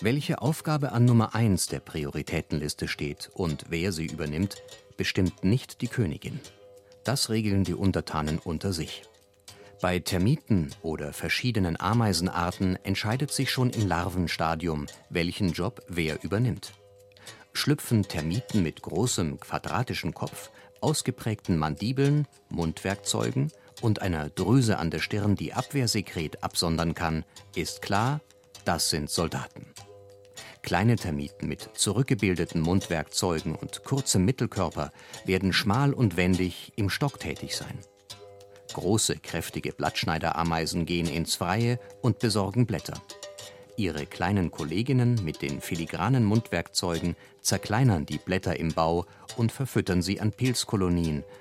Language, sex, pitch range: German, male, 85-115 Hz